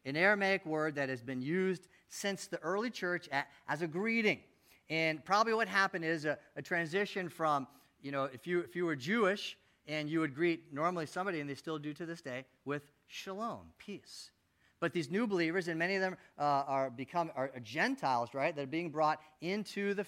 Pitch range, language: 140-185 Hz, English